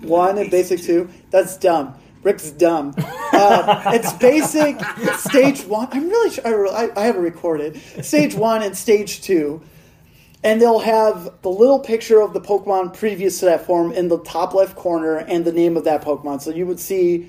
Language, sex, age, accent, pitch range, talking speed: English, male, 30-49, American, 165-215 Hz, 185 wpm